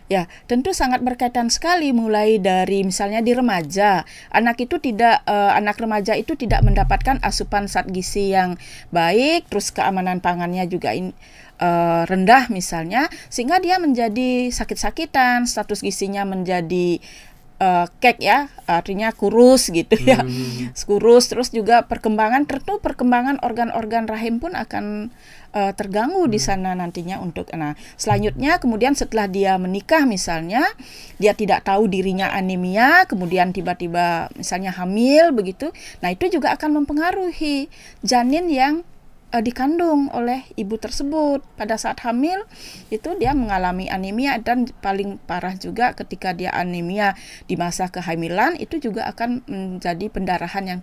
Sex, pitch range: female, 185-265 Hz